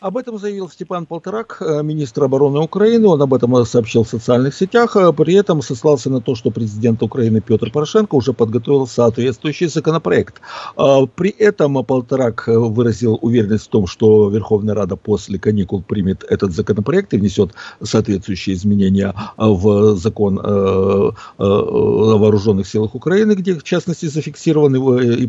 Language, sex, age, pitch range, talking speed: Russian, male, 60-79, 110-155 Hz, 140 wpm